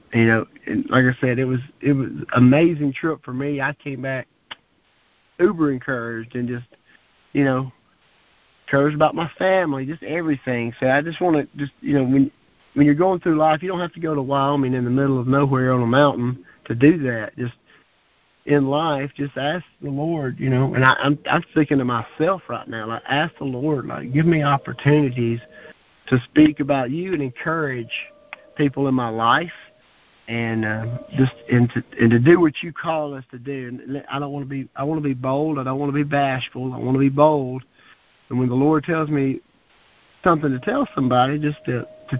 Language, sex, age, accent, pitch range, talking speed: English, male, 40-59, American, 125-150 Hz, 210 wpm